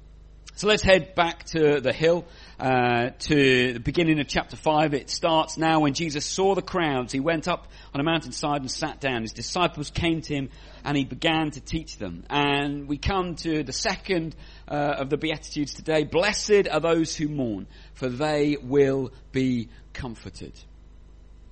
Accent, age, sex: British, 40-59, male